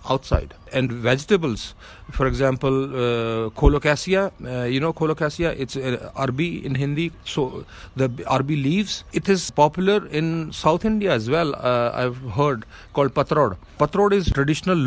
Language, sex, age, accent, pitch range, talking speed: English, male, 40-59, Indian, 120-150 Hz, 140 wpm